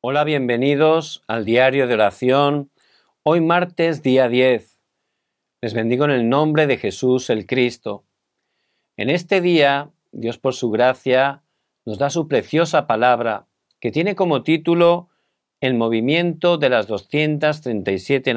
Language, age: Korean, 50-69